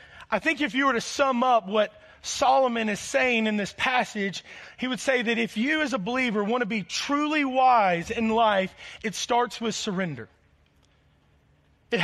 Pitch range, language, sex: 195-255 Hz, English, male